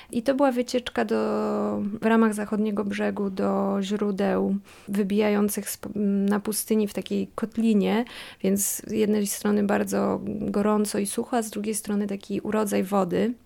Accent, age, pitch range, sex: native, 20-39, 200-235 Hz, female